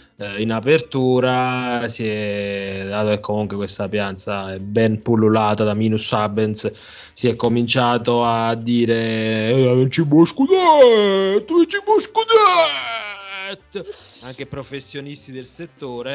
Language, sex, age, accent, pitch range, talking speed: Italian, male, 30-49, native, 115-140 Hz, 105 wpm